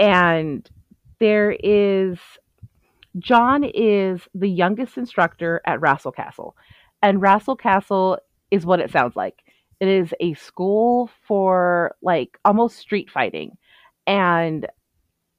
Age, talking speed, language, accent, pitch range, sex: 30-49, 115 wpm, English, American, 165-200 Hz, female